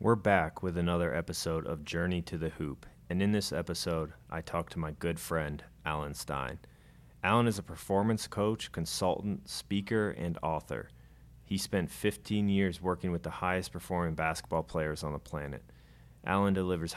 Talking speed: 165 wpm